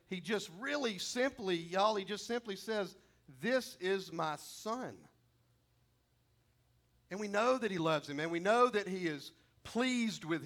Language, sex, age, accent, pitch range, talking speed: English, male, 50-69, American, 170-230 Hz, 160 wpm